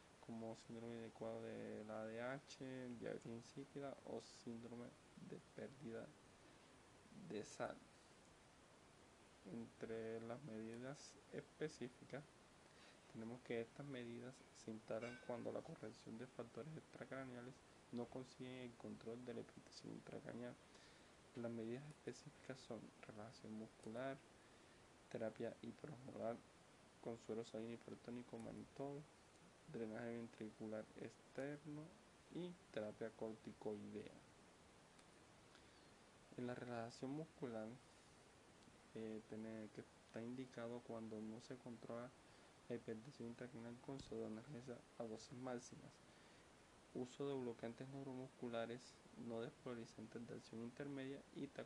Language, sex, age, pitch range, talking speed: Spanish, male, 20-39, 115-130 Hz, 100 wpm